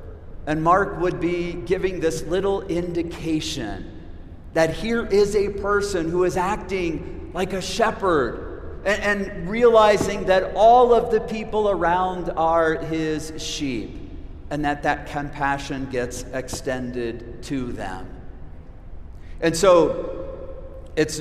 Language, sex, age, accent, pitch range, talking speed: English, male, 40-59, American, 140-200 Hz, 115 wpm